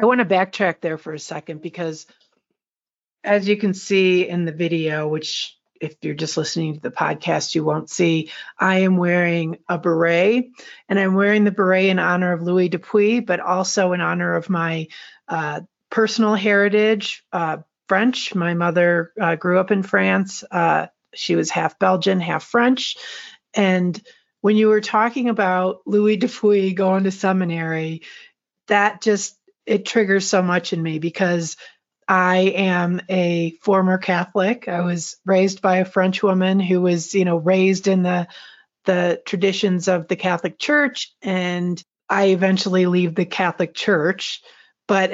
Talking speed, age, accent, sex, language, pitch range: 160 wpm, 50-69, American, female, English, 170-200 Hz